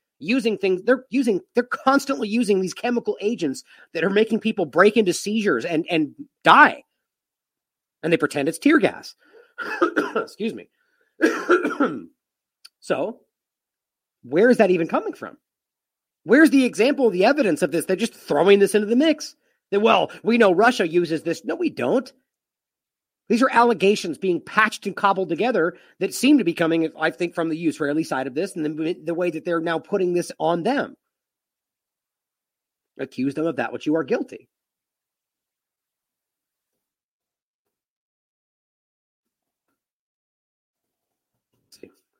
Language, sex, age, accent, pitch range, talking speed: English, male, 40-59, American, 160-245 Hz, 145 wpm